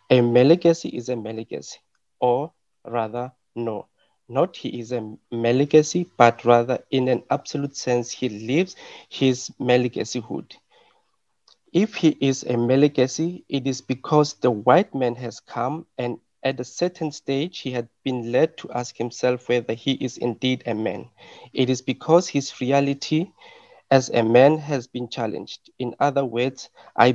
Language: English